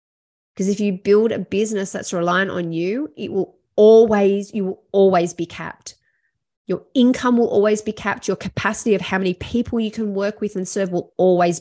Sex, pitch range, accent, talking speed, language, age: female, 175-215 Hz, Australian, 195 wpm, English, 30-49